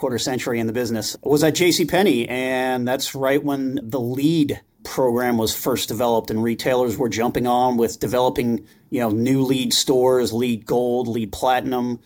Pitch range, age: 115-140 Hz, 30-49